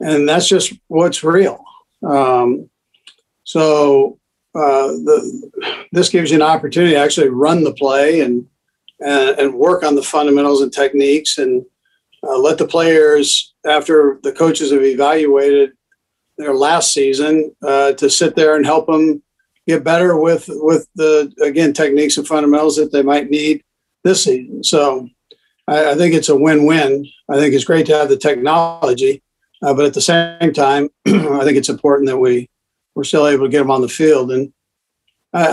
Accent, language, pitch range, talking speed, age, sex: American, English, 140-165 Hz, 170 wpm, 60-79, male